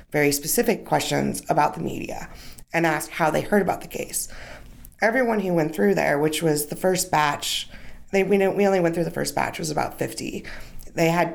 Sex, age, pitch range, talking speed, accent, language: female, 30-49, 155-190 Hz, 210 wpm, American, English